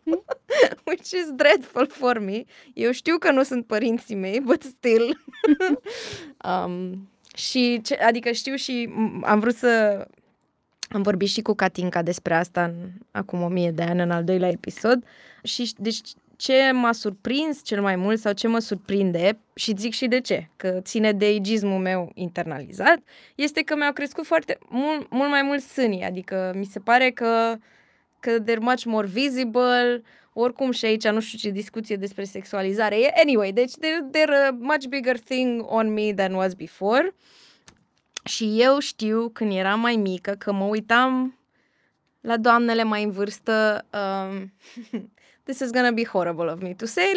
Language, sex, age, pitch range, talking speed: Romanian, female, 20-39, 205-255 Hz, 165 wpm